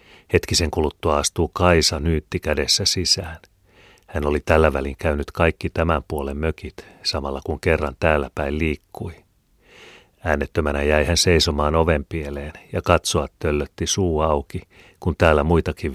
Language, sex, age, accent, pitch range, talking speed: Finnish, male, 40-59, native, 75-95 Hz, 135 wpm